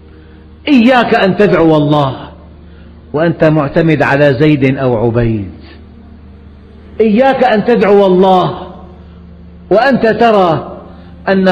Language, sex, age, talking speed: Arabic, male, 50-69, 90 wpm